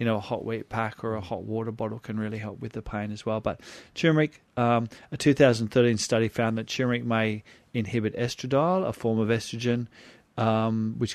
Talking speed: 200 wpm